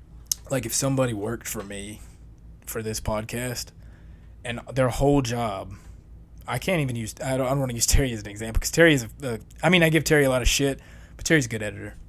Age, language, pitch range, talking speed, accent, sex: 20-39, English, 100-130 Hz, 230 wpm, American, male